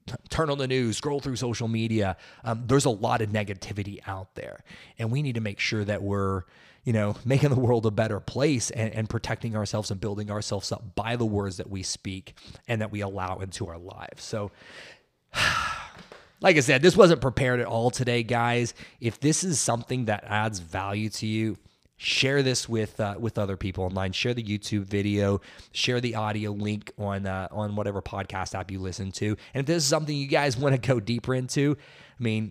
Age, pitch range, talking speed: 30-49, 100-125 Hz, 205 wpm